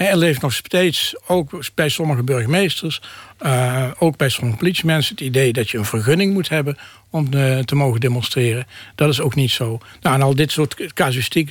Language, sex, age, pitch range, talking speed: Dutch, male, 60-79, 130-165 Hz, 190 wpm